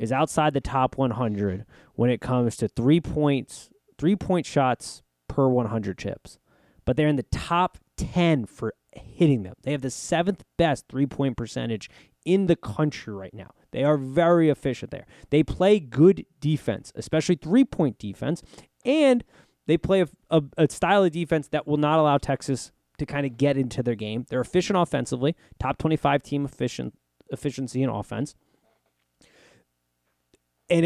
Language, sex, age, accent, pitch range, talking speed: English, male, 20-39, American, 120-160 Hz, 160 wpm